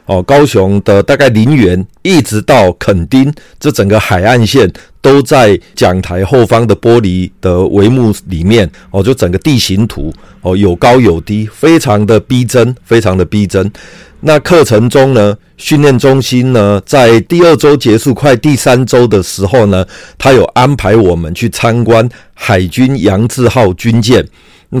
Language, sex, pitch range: Chinese, male, 100-135 Hz